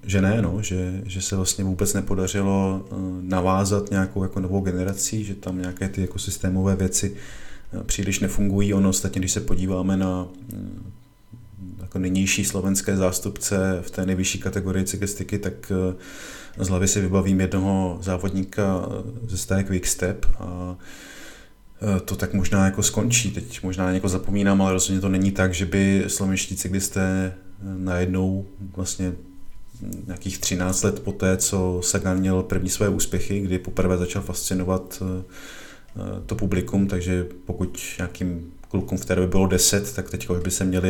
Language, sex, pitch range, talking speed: Czech, male, 90-100 Hz, 145 wpm